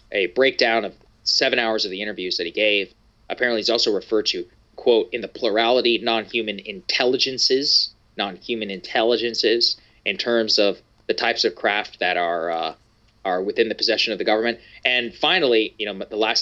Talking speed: 170 wpm